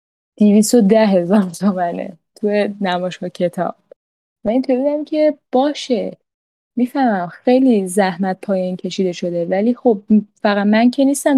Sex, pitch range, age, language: female, 195-235 Hz, 10-29, Persian